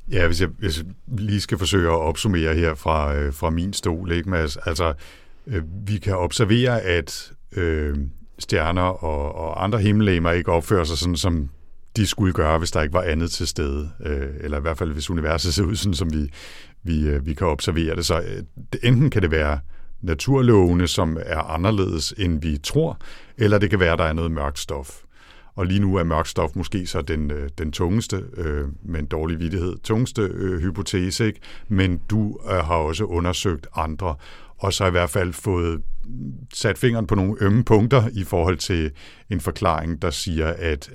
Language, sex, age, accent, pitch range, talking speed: Danish, male, 60-79, native, 80-95 Hz, 190 wpm